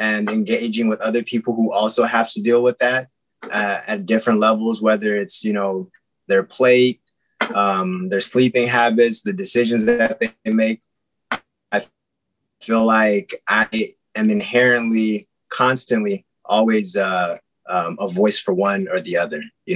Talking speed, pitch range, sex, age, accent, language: 150 wpm, 95-125 Hz, male, 20-39, American, English